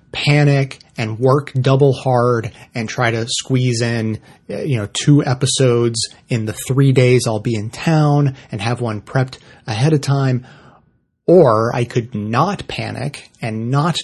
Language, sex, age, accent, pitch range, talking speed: English, male, 30-49, American, 115-140 Hz, 155 wpm